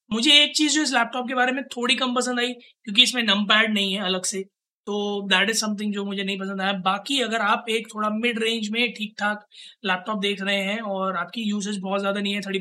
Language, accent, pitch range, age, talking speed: Hindi, native, 195-230 Hz, 20-39, 245 wpm